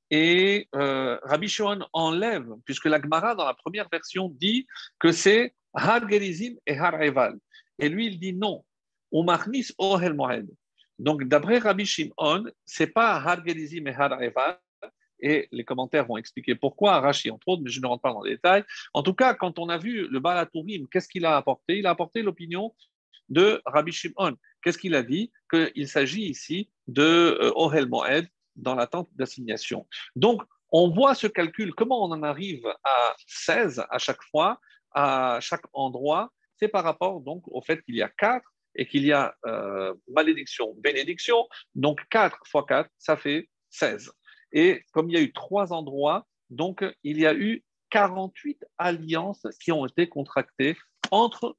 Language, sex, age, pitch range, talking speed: French, male, 50-69, 150-205 Hz, 165 wpm